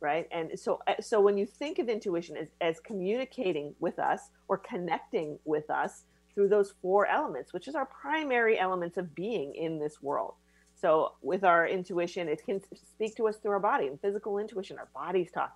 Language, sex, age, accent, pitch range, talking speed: English, female, 40-59, American, 155-200 Hz, 195 wpm